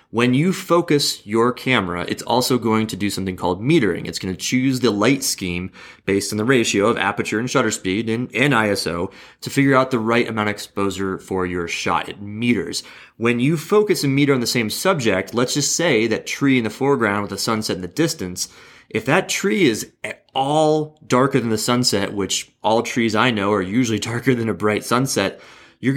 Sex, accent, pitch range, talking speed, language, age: male, American, 100-130 Hz, 210 wpm, English, 30-49